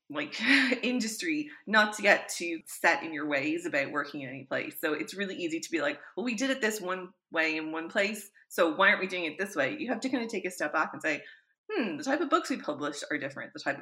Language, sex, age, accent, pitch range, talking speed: English, female, 30-49, American, 150-200 Hz, 270 wpm